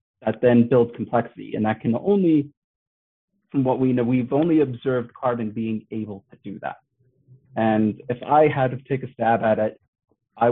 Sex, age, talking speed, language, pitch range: male, 30-49, 185 wpm, English, 110-130 Hz